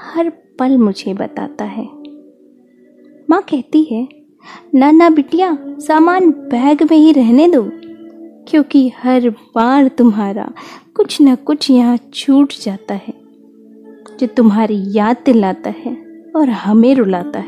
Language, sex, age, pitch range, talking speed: Hindi, female, 20-39, 220-300 Hz, 125 wpm